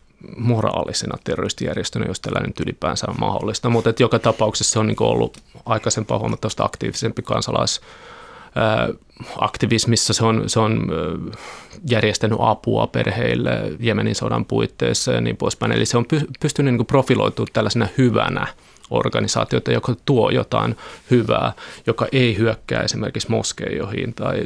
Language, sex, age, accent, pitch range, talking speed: Finnish, male, 30-49, native, 110-120 Hz, 120 wpm